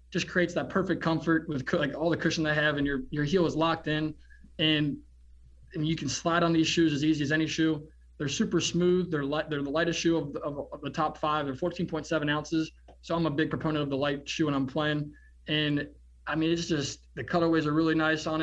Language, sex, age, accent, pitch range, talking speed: English, male, 20-39, American, 145-165 Hz, 240 wpm